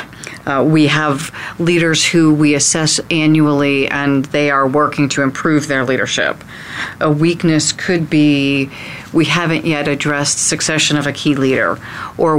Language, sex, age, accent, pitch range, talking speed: English, female, 40-59, American, 140-160 Hz, 145 wpm